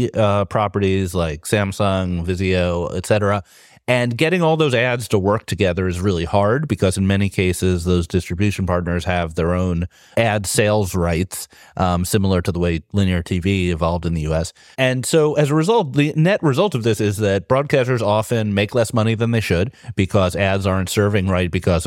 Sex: male